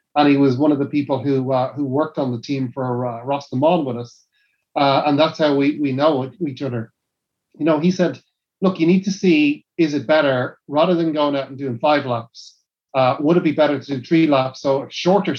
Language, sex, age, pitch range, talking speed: English, male, 30-49, 135-160 Hz, 240 wpm